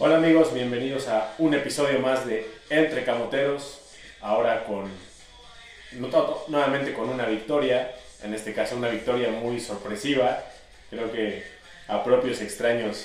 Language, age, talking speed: Spanish, 20-39, 130 wpm